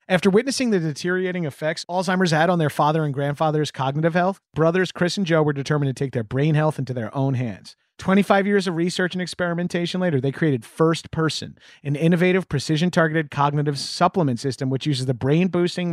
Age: 30-49